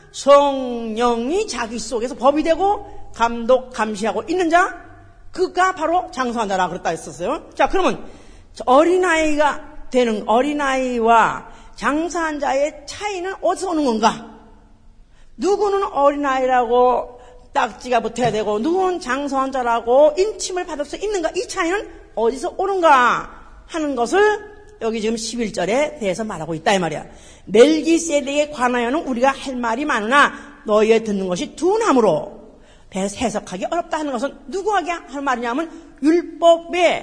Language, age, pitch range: Korean, 40-59, 245-355 Hz